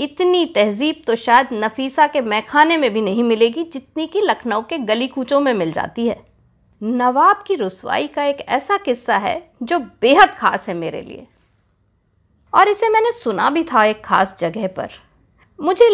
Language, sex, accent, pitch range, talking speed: Hindi, female, native, 205-345 Hz, 175 wpm